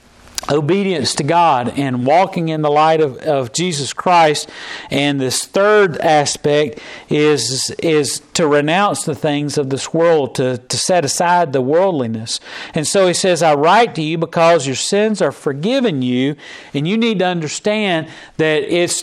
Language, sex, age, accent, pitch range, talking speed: English, male, 40-59, American, 145-175 Hz, 165 wpm